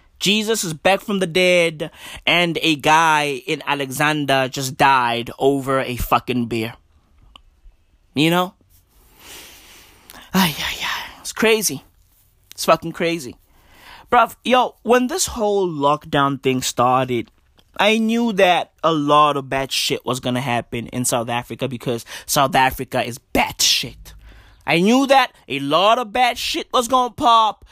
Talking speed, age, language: 145 wpm, 20-39, English